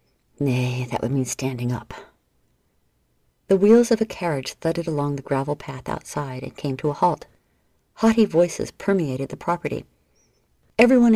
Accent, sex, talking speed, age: American, female, 155 wpm, 50-69